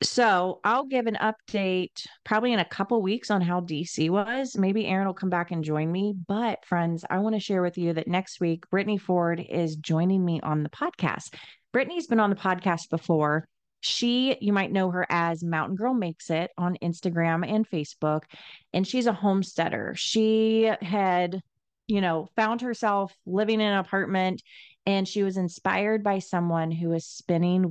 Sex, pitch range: female, 165-205 Hz